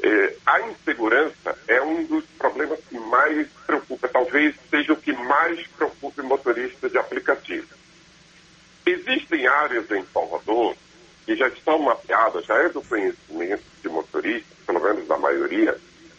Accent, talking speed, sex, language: Brazilian, 135 wpm, male, Portuguese